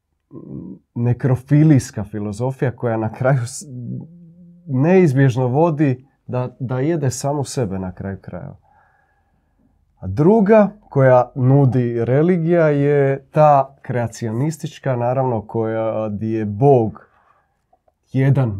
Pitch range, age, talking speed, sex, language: 110-140 Hz, 30-49, 95 wpm, male, Croatian